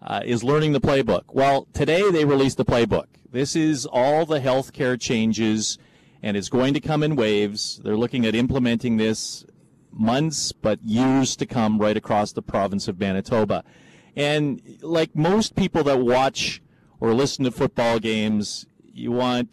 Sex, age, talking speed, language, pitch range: male, 40-59, 165 wpm, English, 115-145 Hz